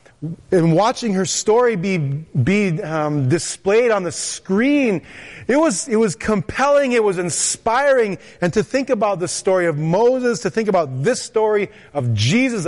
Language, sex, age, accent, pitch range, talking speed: English, male, 30-49, American, 150-215 Hz, 160 wpm